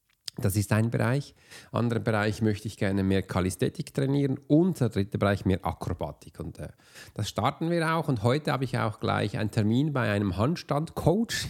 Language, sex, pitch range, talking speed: German, male, 105-140 Hz, 185 wpm